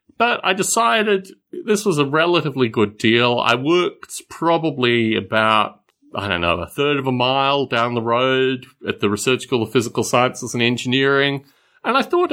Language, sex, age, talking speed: English, male, 40-59, 175 wpm